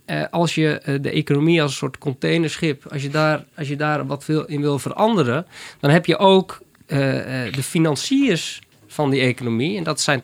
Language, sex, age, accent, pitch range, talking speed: Dutch, male, 20-39, Dutch, 130-160 Hz, 180 wpm